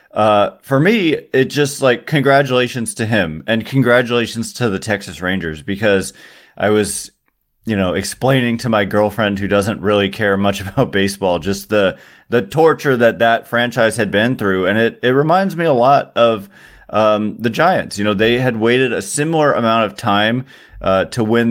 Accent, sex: American, male